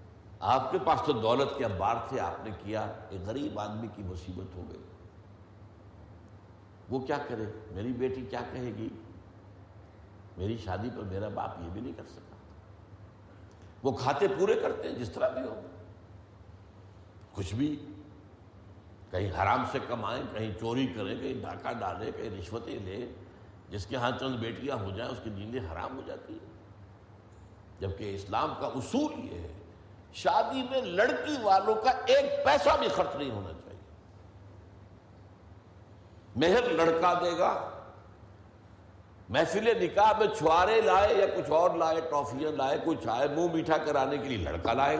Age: 70-89